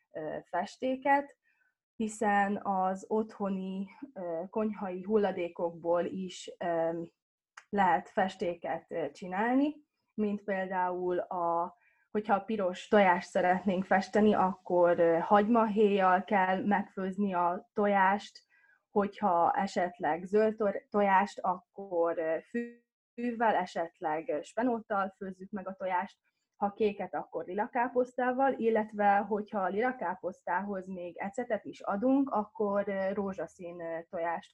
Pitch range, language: 180-220 Hz, Hungarian